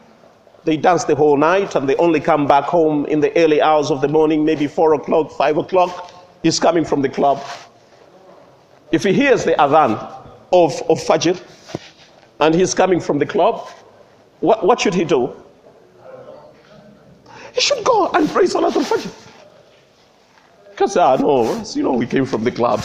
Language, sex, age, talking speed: English, male, 50-69, 170 wpm